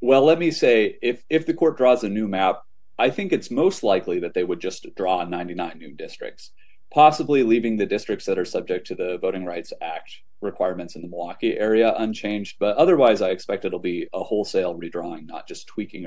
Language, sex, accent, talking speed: English, male, American, 205 wpm